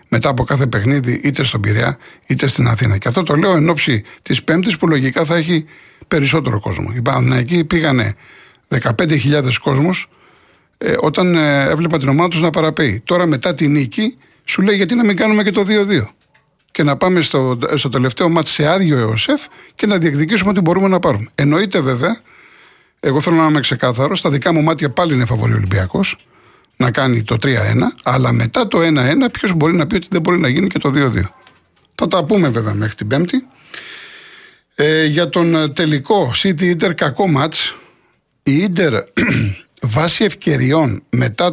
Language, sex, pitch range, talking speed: Greek, male, 125-175 Hz, 175 wpm